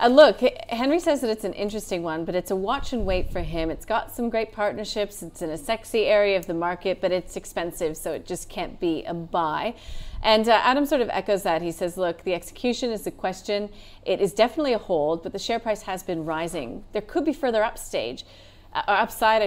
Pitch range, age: 175-225 Hz, 30-49